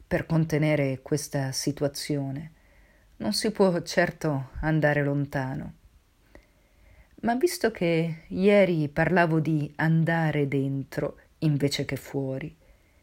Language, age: Italian, 40-59